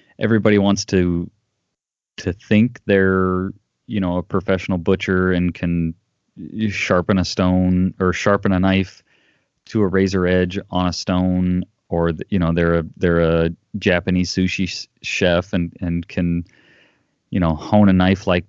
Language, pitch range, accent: English, 90-105 Hz, American